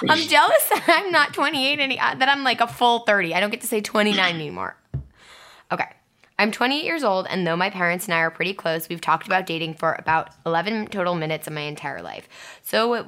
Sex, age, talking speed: female, 10-29, 220 wpm